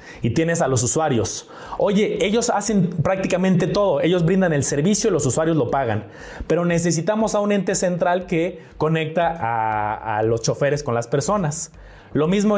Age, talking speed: 30-49, 170 wpm